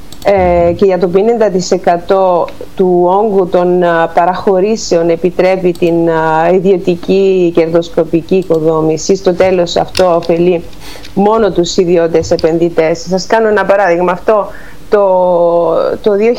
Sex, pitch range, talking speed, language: female, 170-195 Hz, 100 wpm, Greek